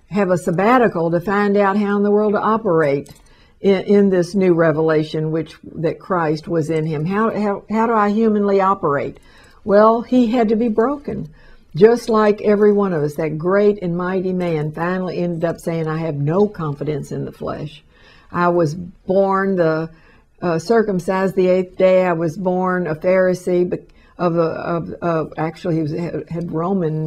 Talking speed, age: 180 wpm, 60-79